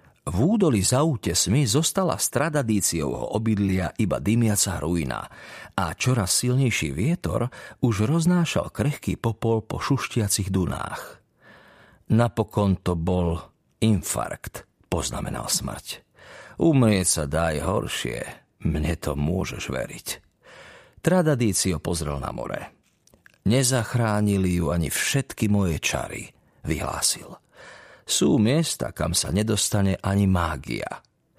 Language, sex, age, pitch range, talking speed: Slovak, male, 50-69, 85-115 Hz, 105 wpm